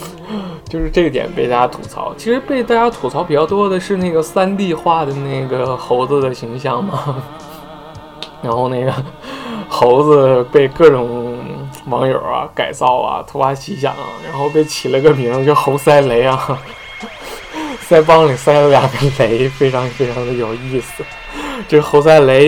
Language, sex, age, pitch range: Chinese, male, 20-39, 130-185 Hz